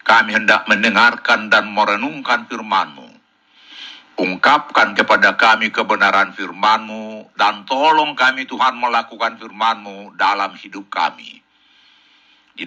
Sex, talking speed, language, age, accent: male, 105 wpm, Indonesian, 60-79, native